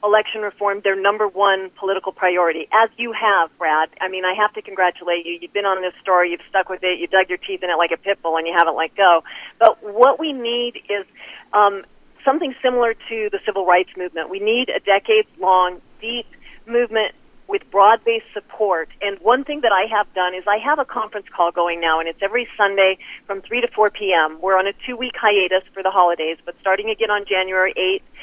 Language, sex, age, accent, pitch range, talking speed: English, female, 40-59, American, 190-240 Hz, 220 wpm